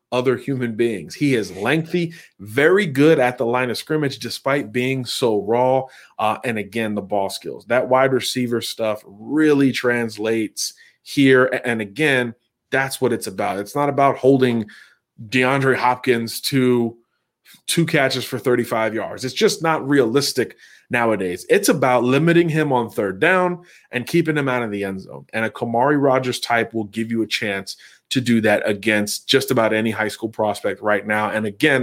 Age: 30-49